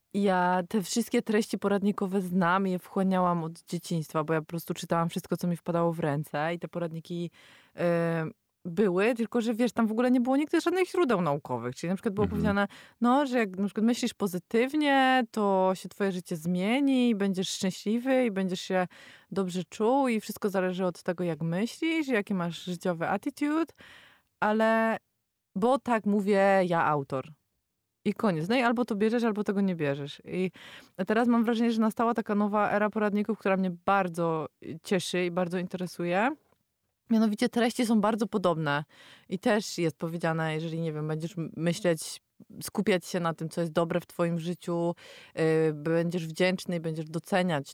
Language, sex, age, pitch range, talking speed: Polish, female, 20-39, 170-220 Hz, 175 wpm